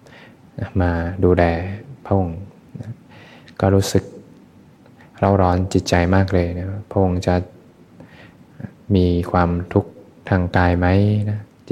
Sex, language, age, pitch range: male, Thai, 20-39, 90-95 Hz